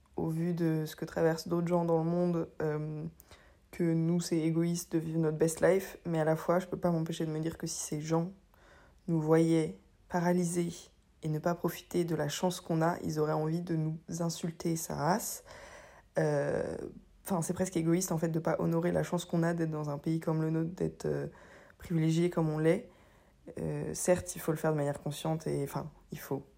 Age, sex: 20-39, female